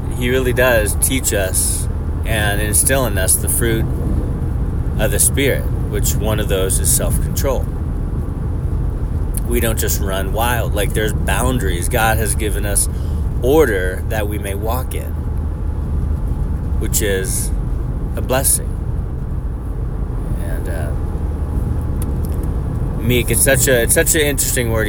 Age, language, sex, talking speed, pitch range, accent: 30-49, English, male, 125 wpm, 80-115 Hz, American